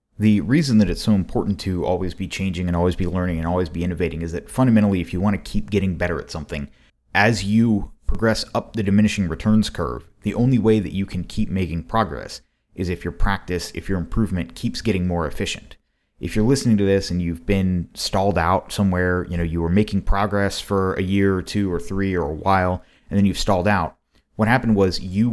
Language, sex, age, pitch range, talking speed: English, male, 30-49, 85-105 Hz, 225 wpm